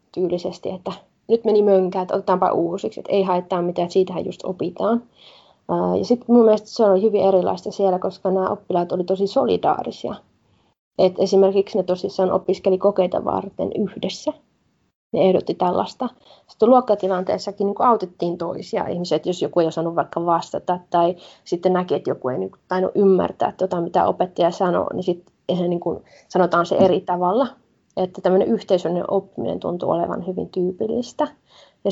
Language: Finnish